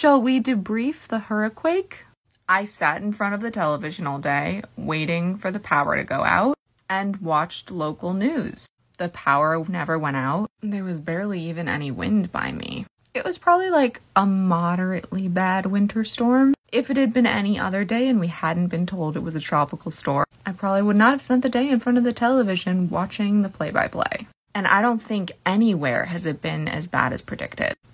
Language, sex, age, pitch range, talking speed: English, female, 20-39, 160-205 Hz, 200 wpm